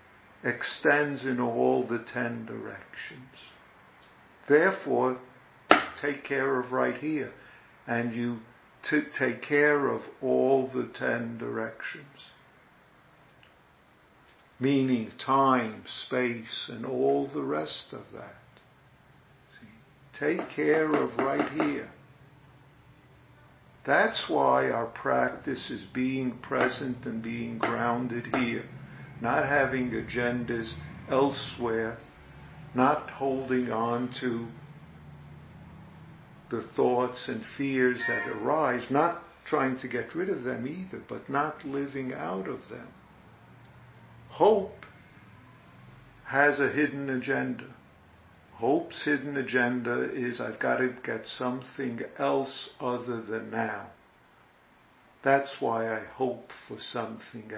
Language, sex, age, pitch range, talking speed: English, male, 50-69, 115-135 Hz, 105 wpm